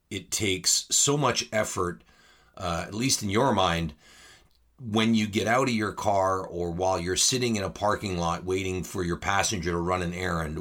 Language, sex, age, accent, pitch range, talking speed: English, male, 40-59, American, 85-105 Hz, 190 wpm